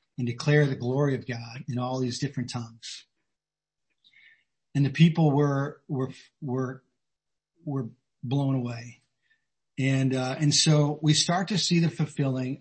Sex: male